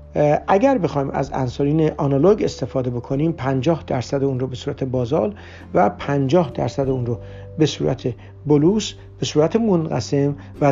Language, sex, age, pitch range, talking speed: Persian, male, 60-79, 135-175 Hz, 145 wpm